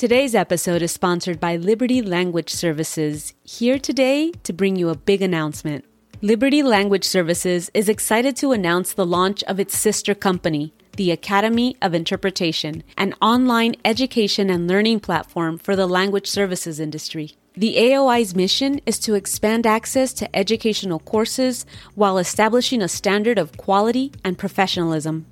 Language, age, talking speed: English, 30-49, 145 wpm